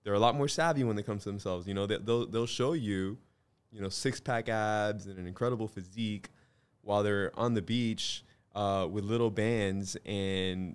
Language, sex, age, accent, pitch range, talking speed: English, male, 20-39, American, 95-115 Hz, 195 wpm